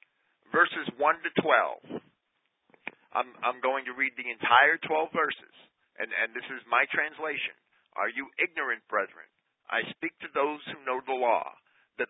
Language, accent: English, American